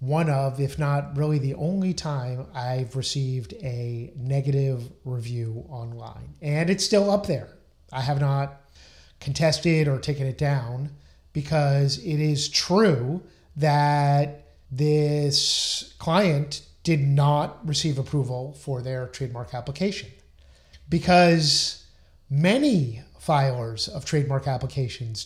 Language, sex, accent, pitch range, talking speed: English, male, American, 130-160 Hz, 115 wpm